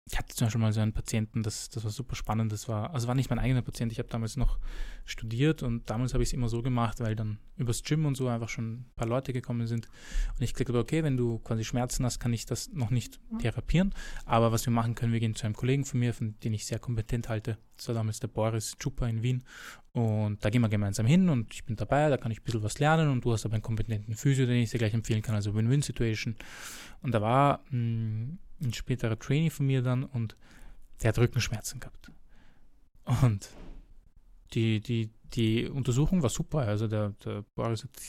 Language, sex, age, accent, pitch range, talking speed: German, male, 20-39, German, 110-130 Hz, 230 wpm